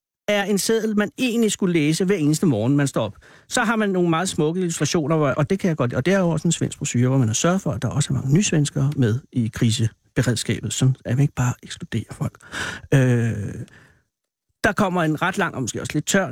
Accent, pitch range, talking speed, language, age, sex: native, 125-175 Hz, 240 wpm, Danish, 60-79, male